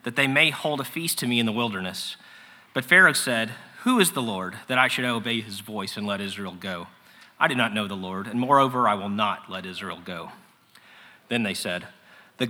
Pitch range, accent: 110-135 Hz, American